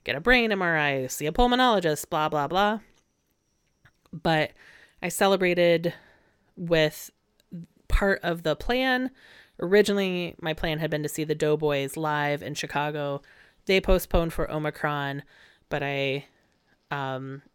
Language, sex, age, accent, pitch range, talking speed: English, female, 30-49, American, 145-170 Hz, 125 wpm